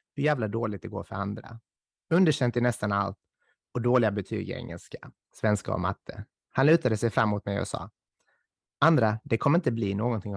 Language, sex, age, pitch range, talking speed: English, male, 30-49, 105-125 Hz, 185 wpm